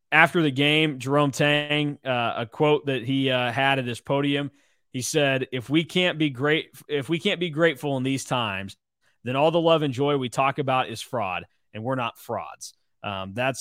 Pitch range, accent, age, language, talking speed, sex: 115-150 Hz, American, 20-39, English, 205 wpm, male